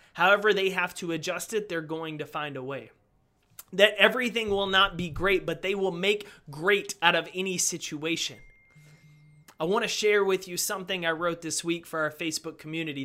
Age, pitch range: 30-49, 155-200 Hz